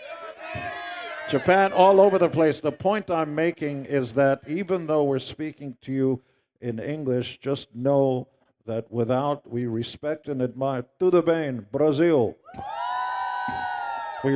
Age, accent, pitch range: 50-69, American, 140-185 Hz